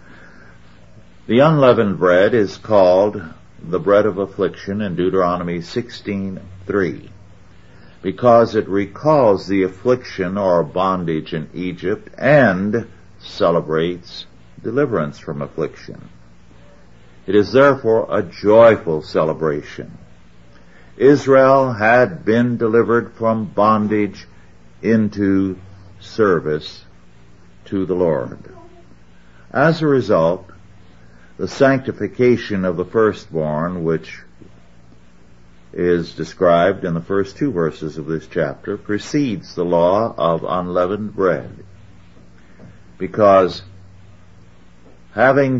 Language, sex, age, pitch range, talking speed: English, male, 60-79, 80-105 Hz, 90 wpm